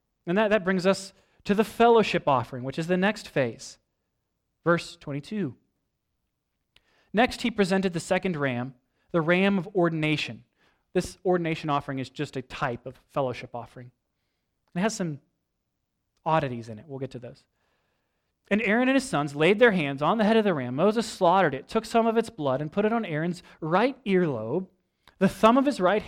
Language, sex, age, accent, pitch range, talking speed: English, male, 30-49, American, 140-200 Hz, 185 wpm